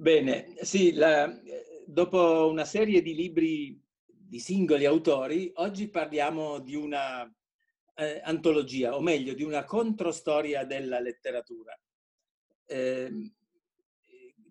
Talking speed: 100 wpm